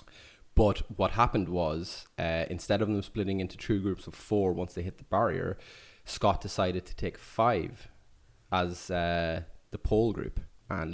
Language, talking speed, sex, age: English, 165 wpm, male, 20-39